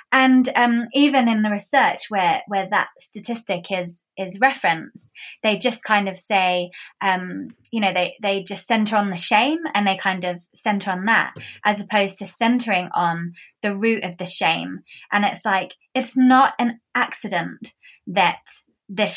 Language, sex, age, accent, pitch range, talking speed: English, female, 20-39, British, 190-230 Hz, 170 wpm